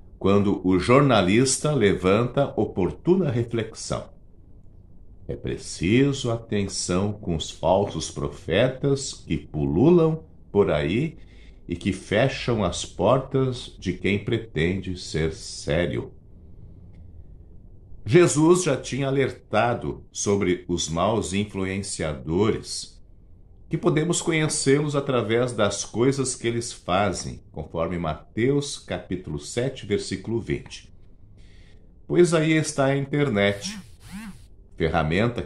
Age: 50-69